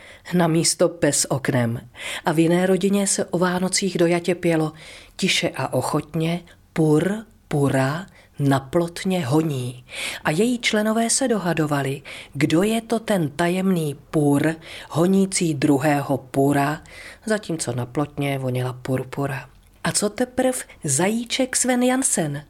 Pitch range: 140-190 Hz